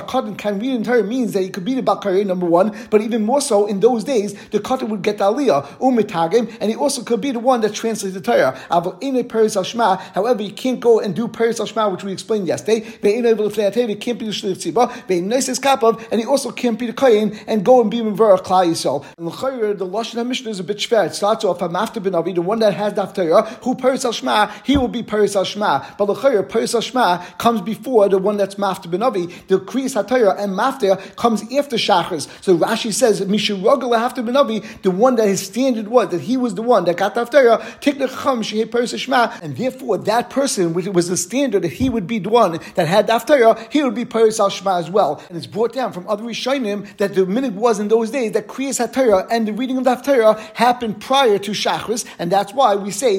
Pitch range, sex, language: 195-240 Hz, male, English